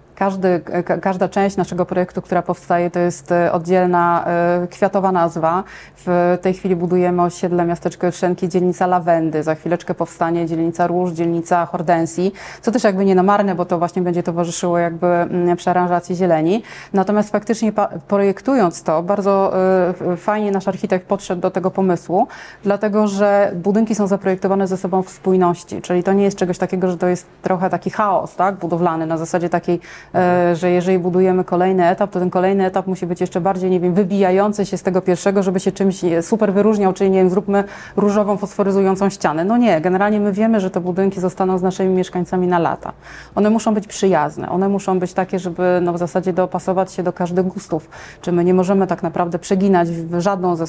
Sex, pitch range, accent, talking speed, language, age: female, 175-195 Hz, native, 190 wpm, Polish, 20-39